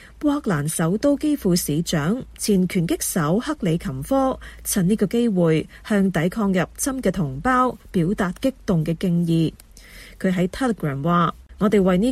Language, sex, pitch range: Chinese, female, 175-235 Hz